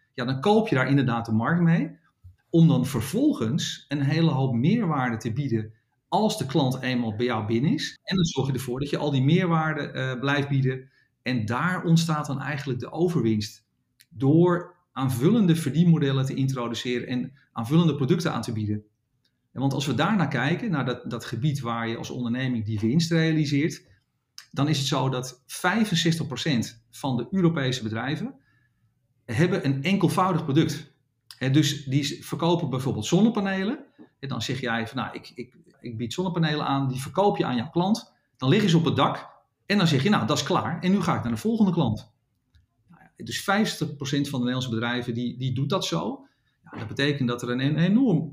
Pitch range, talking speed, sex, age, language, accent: 125-165 Hz, 185 wpm, male, 40-59, Dutch, Dutch